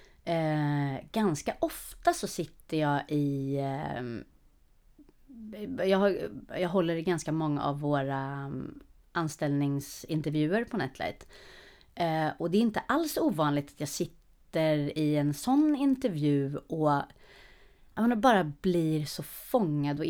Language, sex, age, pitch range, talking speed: Swedish, female, 30-49, 145-200 Hz, 120 wpm